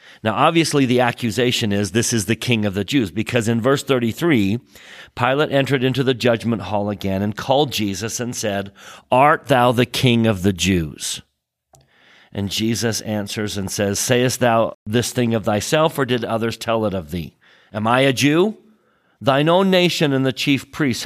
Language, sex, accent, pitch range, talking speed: English, male, American, 100-125 Hz, 180 wpm